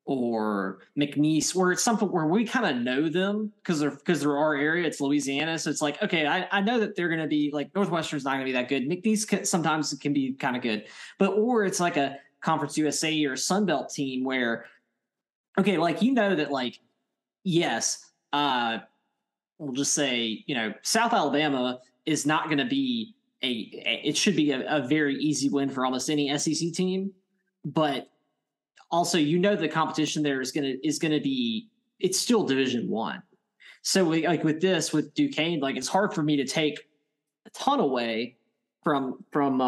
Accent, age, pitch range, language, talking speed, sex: American, 20-39, 135-180 Hz, English, 200 wpm, male